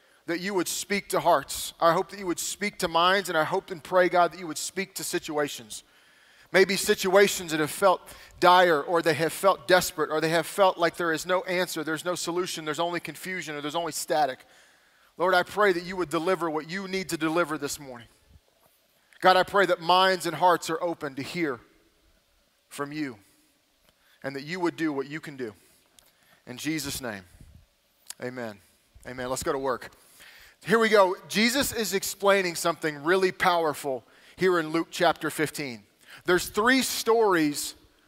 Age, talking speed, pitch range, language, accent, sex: 30-49, 185 wpm, 155-185 Hz, English, American, male